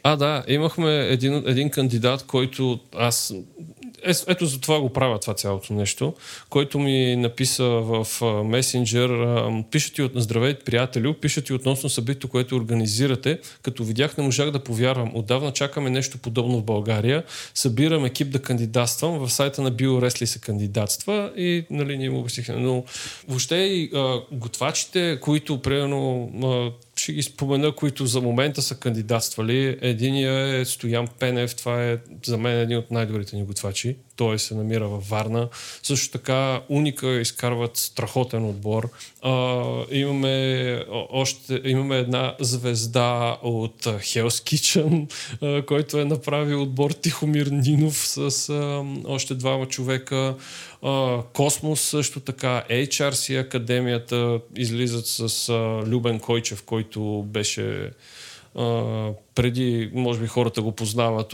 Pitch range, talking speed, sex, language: 115-140 Hz, 135 wpm, male, Bulgarian